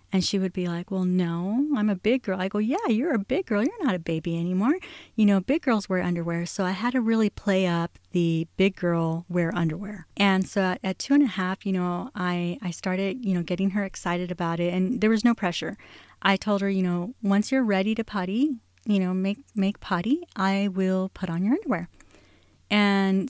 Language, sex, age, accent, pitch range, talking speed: English, female, 30-49, American, 180-210 Hz, 225 wpm